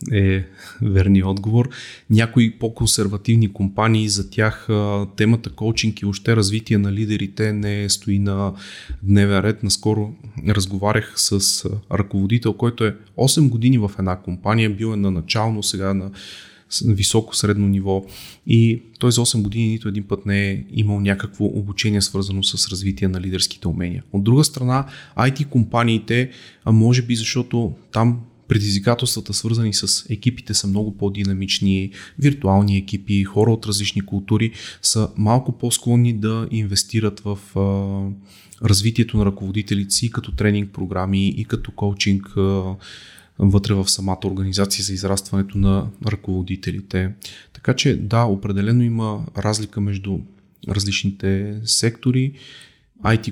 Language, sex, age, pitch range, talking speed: Bulgarian, male, 30-49, 100-115 Hz, 130 wpm